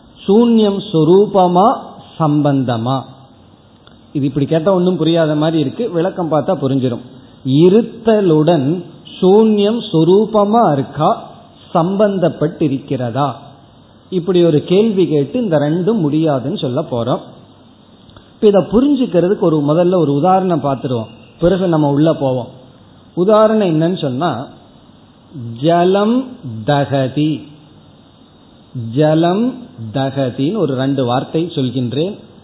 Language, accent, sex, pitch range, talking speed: Tamil, native, male, 140-205 Hz, 60 wpm